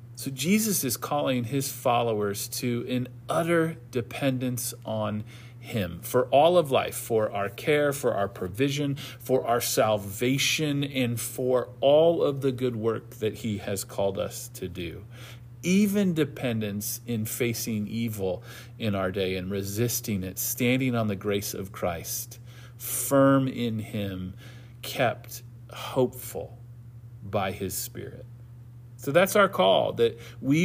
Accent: American